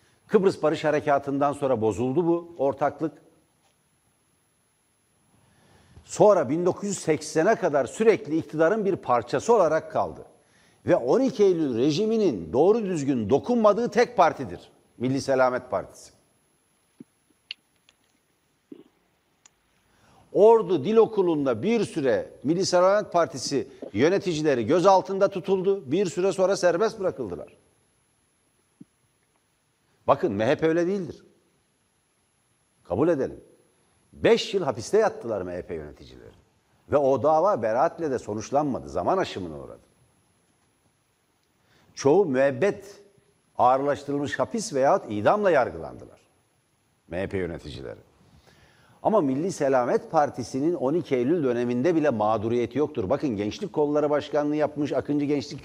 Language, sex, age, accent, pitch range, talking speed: Turkish, male, 60-79, native, 140-195 Hz, 100 wpm